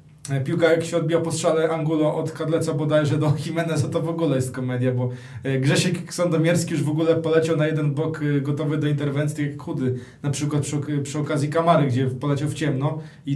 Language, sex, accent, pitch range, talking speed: Polish, male, native, 145-165 Hz, 200 wpm